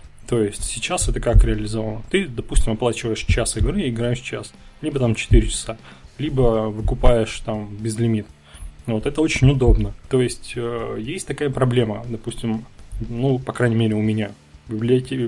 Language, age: Russian, 20-39